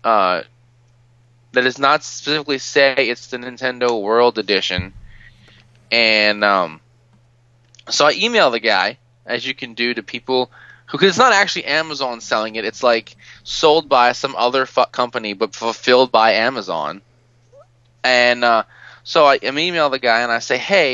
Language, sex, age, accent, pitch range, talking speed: English, male, 20-39, American, 115-140 Hz, 160 wpm